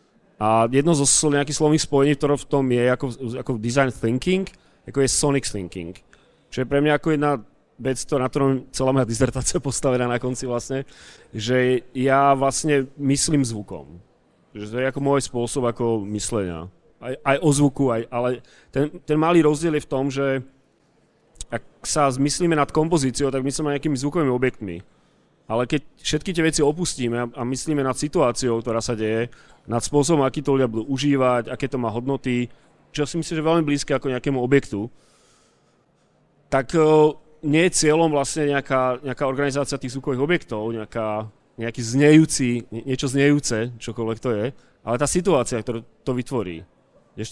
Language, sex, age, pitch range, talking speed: Czech, male, 30-49, 120-145 Hz, 160 wpm